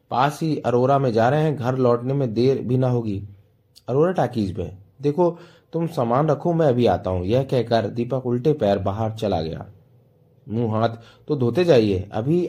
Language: Hindi